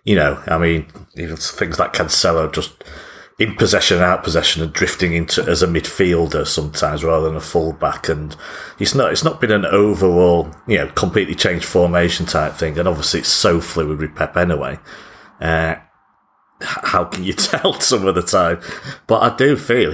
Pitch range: 85-105 Hz